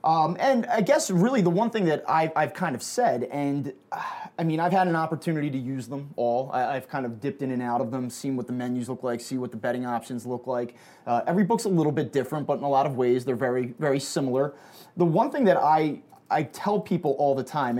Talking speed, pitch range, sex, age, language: 260 wpm, 125-160 Hz, male, 20-39, English